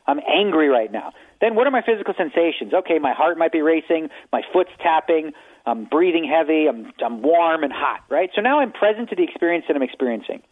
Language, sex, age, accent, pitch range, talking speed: English, male, 40-59, American, 145-220 Hz, 215 wpm